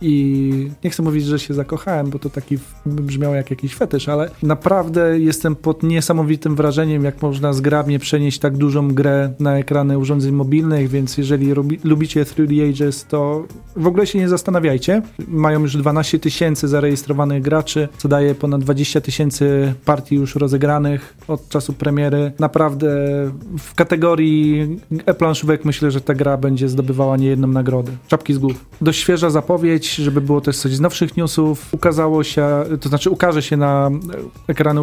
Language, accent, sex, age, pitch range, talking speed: Polish, native, male, 40-59, 140-160 Hz, 160 wpm